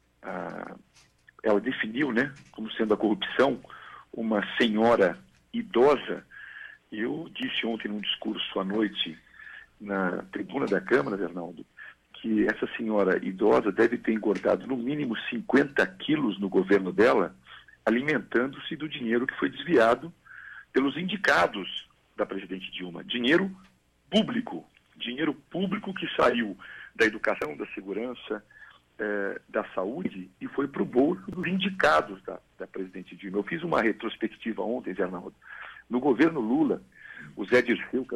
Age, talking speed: 50-69, 130 wpm